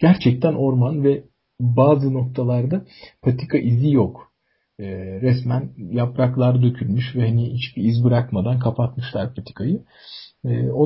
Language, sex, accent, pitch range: Turkish, male, native, 120-150 Hz